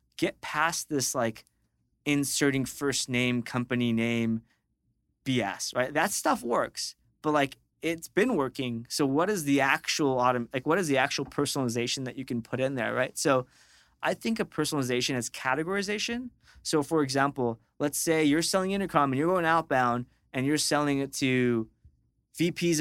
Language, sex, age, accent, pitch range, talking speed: English, male, 20-39, American, 125-150 Hz, 165 wpm